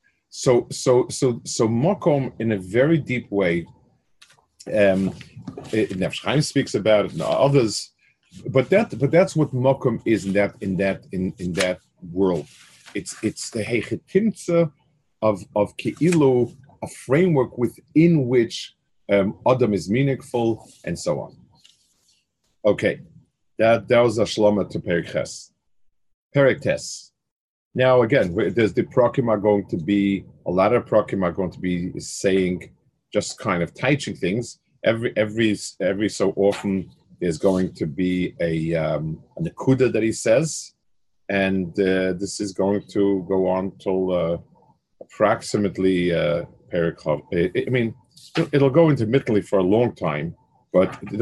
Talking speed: 140 wpm